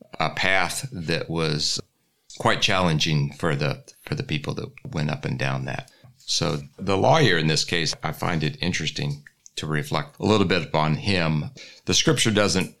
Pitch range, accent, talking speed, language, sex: 75-90 Hz, American, 175 wpm, English, male